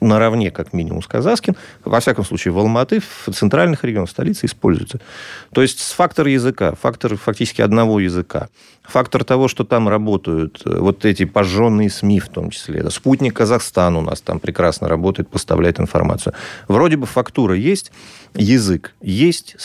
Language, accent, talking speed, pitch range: Russian, native, 155 wpm, 95-125 Hz